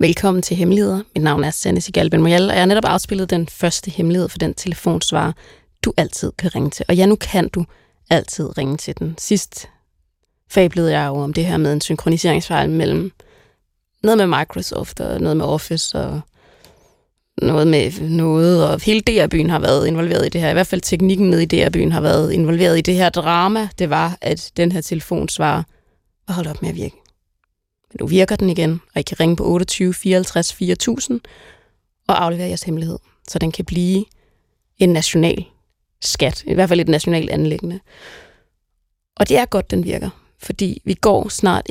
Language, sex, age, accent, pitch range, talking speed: Danish, female, 20-39, native, 160-185 Hz, 190 wpm